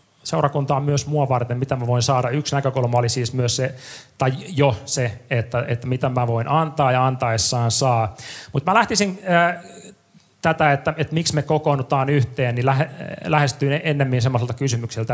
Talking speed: 170 wpm